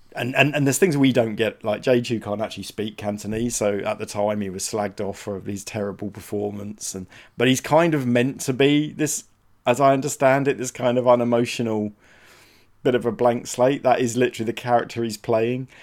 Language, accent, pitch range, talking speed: English, British, 105-125 Hz, 210 wpm